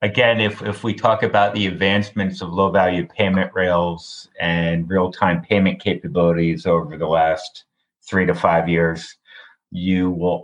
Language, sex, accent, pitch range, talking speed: English, male, American, 85-100 Hz, 145 wpm